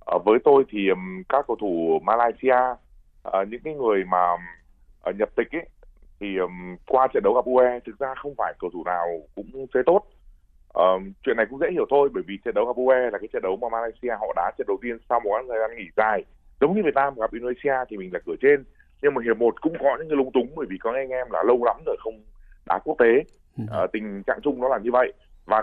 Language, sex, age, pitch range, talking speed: Vietnamese, male, 20-39, 100-135 Hz, 235 wpm